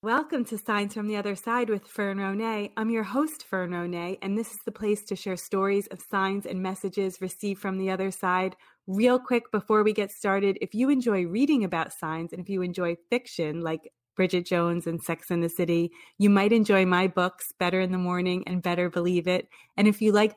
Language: English